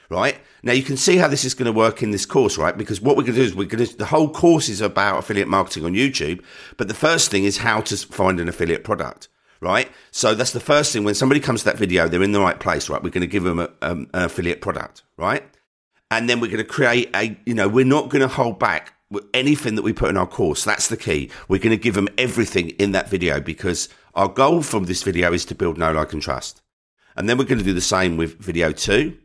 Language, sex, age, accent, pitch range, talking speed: English, male, 50-69, British, 90-125 Hz, 275 wpm